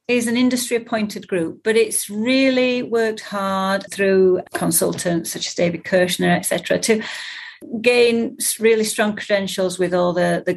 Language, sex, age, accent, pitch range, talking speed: English, female, 40-59, British, 175-230 Hz, 140 wpm